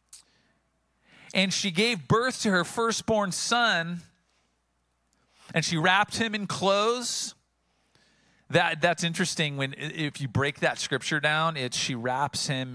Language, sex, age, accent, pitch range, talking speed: English, male, 40-59, American, 130-190 Hz, 130 wpm